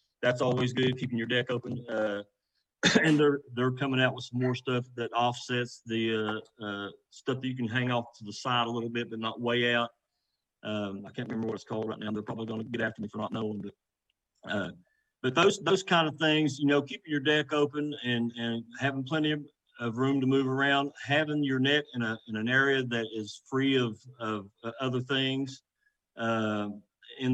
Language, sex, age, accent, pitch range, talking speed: English, male, 50-69, American, 115-135 Hz, 215 wpm